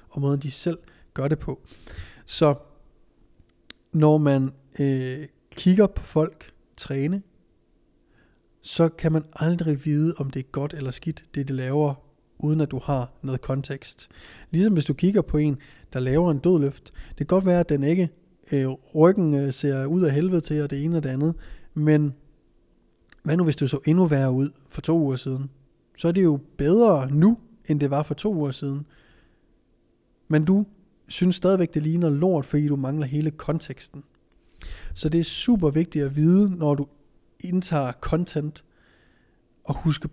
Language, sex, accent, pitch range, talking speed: Danish, male, native, 135-165 Hz, 170 wpm